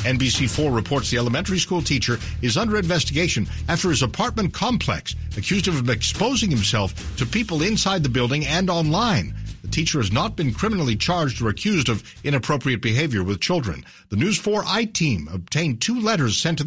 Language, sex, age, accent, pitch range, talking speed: English, male, 60-79, American, 115-170 Hz, 170 wpm